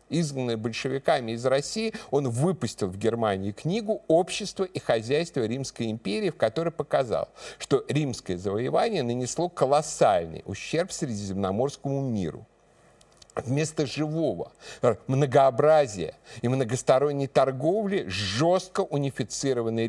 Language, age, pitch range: Russian, 50-69, 120-165 Hz